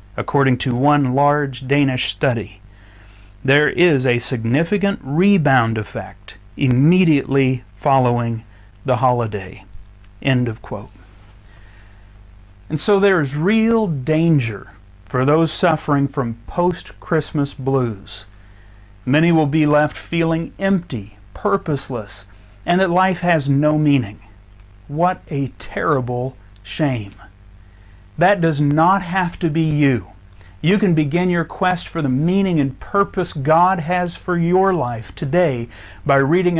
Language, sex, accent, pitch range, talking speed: English, male, American, 105-160 Hz, 120 wpm